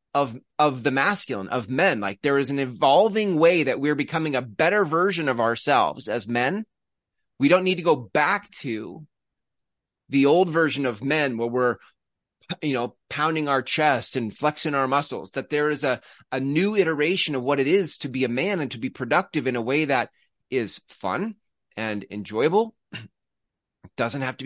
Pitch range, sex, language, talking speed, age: 125-160 Hz, male, English, 185 wpm, 30-49